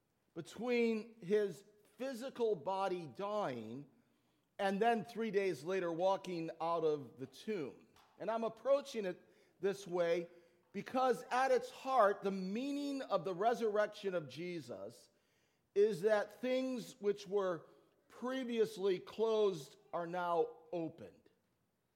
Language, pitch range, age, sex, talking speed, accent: English, 165-215 Hz, 40-59, male, 115 wpm, American